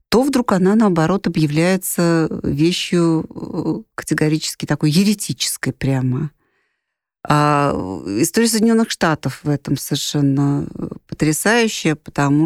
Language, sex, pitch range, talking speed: Russian, female, 145-190 Hz, 90 wpm